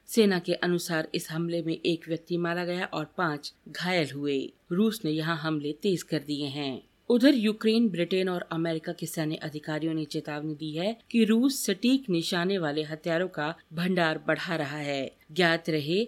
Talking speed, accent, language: 175 wpm, native, Hindi